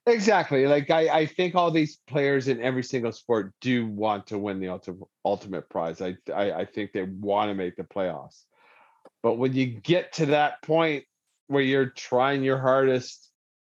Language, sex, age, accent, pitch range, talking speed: English, male, 40-59, American, 105-145 Hz, 185 wpm